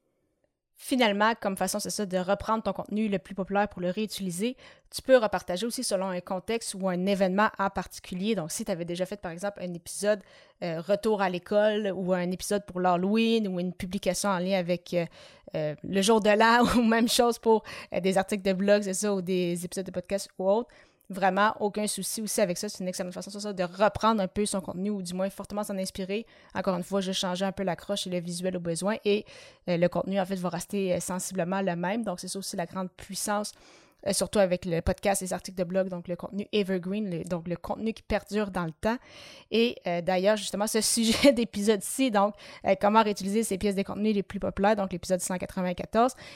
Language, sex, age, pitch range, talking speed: French, female, 30-49, 185-210 Hz, 225 wpm